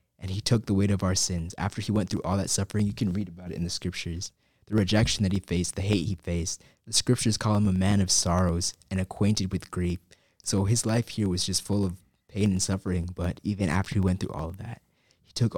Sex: male